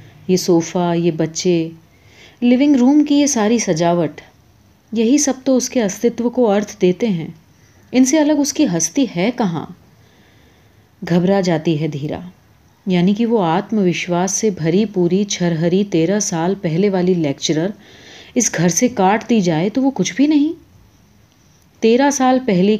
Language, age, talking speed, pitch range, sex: Urdu, 30-49, 145 wpm, 170-240 Hz, female